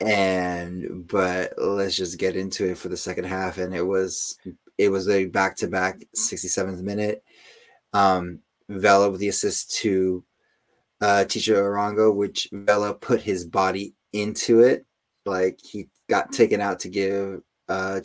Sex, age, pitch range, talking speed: male, 20-39, 95-110 Hz, 145 wpm